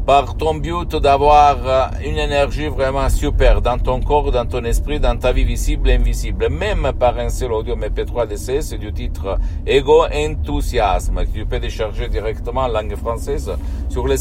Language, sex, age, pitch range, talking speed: Italian, male, 50-69, 105-150 Hz, 180 wpm